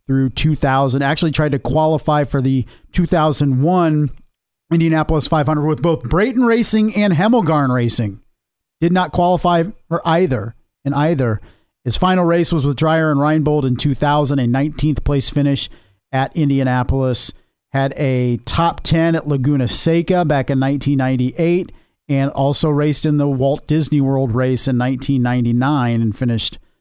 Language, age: English, 50-69